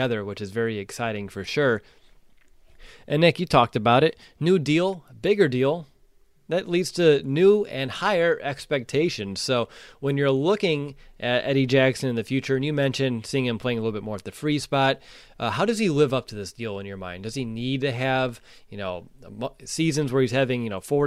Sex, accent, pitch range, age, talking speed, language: male, American, 115-150 Hz, 20-39, 210 wpm, English